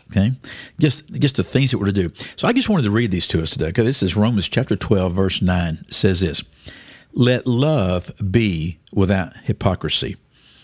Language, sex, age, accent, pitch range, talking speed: English, male, 50-69, American, 95-125 Hz, 200 wpm